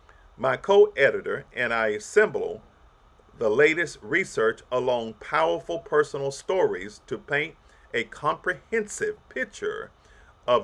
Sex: male